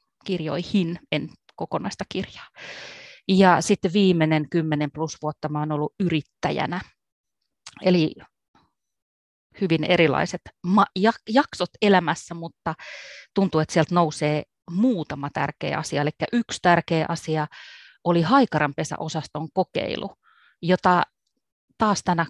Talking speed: 100 wpm